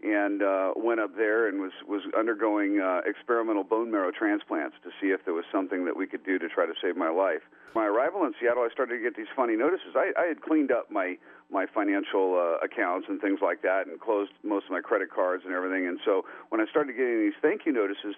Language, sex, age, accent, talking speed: English, male, 40-59, American, 245 wpm